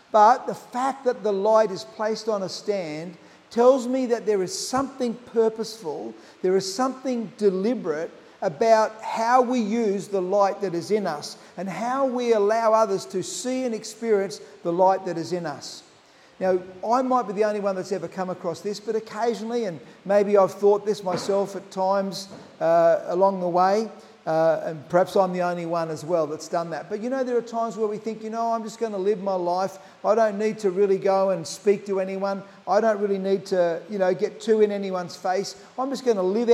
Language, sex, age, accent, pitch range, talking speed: English, male, 50-69, Australian, 185-220 Hz, 215 wpm